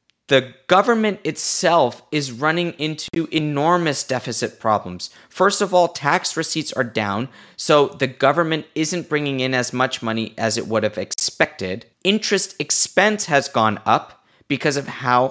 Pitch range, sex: 110-150 Hz, male